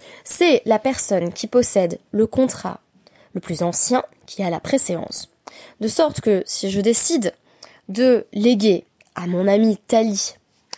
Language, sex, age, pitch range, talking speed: French, female, 20-39, 195-255 Hz, 145 wpm